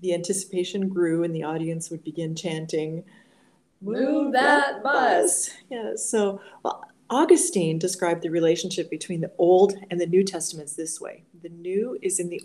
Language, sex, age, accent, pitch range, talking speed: English, female, 40-59, American, 160-200 Hz, 160 wpm